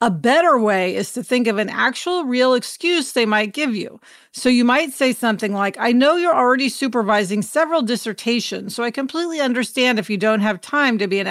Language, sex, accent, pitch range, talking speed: English, female, American, 210-275 Hz, 210 wpm